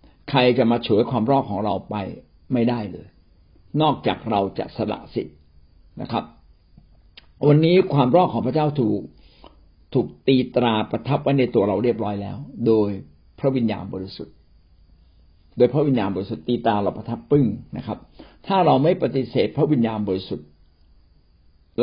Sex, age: male, 60-79